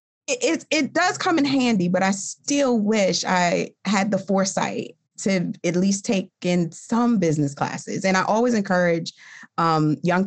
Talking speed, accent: 165 wpm, American